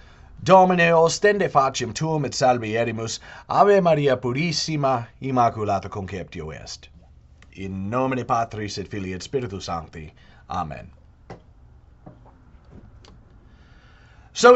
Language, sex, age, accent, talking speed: English, male, 30-49, American, 90 wpm